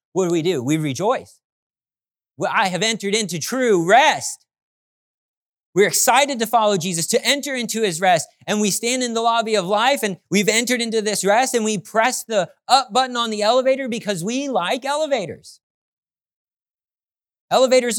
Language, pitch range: English, 150-225 Hz